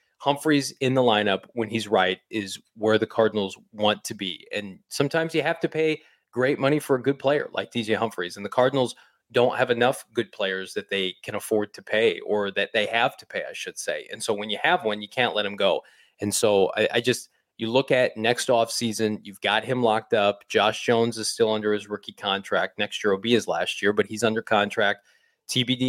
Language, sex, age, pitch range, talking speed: English, male, 20-39, 105-125 Hz, 225 wpm